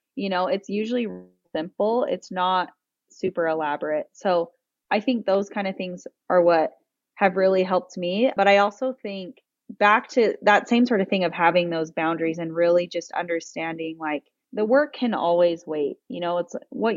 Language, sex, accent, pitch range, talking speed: English, female, American, 170-210 Hz, 180 wpm